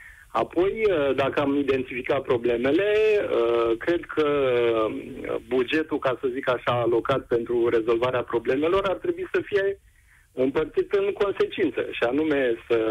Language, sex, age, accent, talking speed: Romanian, male, 40-59, native, 120 wpm